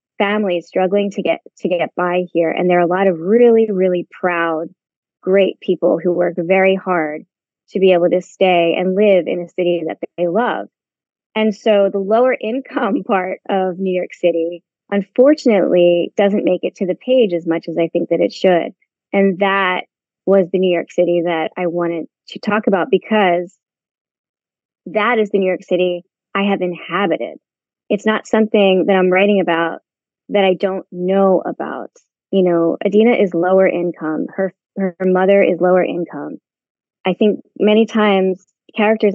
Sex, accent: female, American